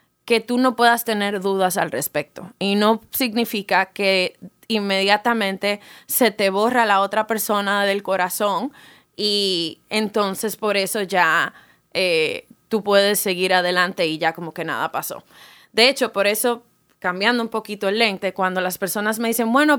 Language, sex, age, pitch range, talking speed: Spanish, female, 20-39, 195-235 Hz, 160 wpm